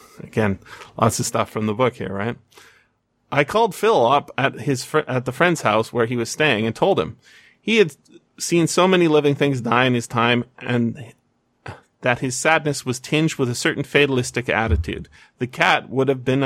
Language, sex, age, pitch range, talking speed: English, male, 30-49, 115-145 Hz, 195 wpm